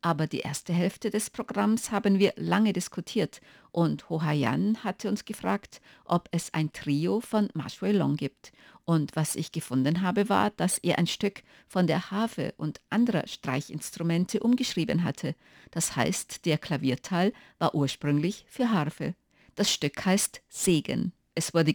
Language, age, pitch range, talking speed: German, 50-69, 150-205 Hz, 150 wpm